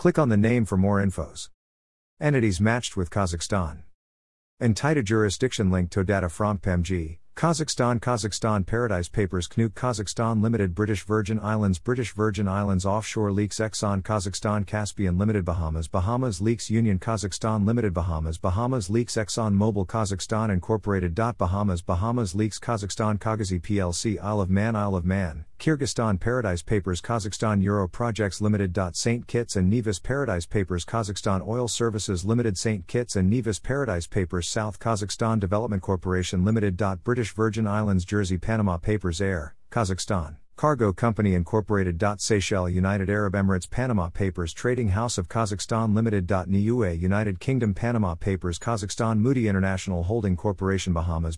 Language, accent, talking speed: English, American, 145 wpm